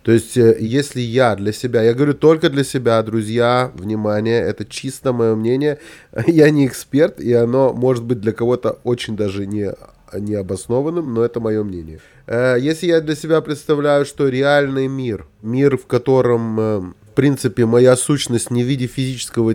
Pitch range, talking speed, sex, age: 110-140 Hz, 160 wpm, male, 20-39